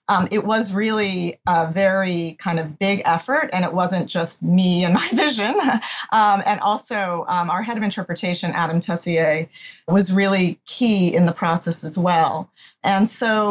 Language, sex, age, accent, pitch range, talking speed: English, female, 40-59, American, 170-210 Hz, 170 wpm